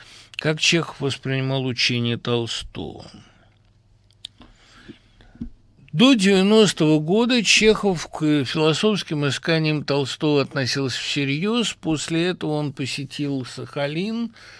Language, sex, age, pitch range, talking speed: Russian, male, 60-79, 120-170 Hz, 80 wpm